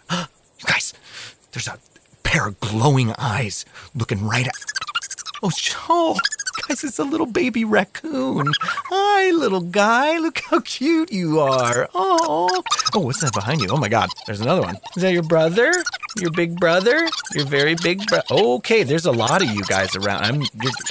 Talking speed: 170 wpm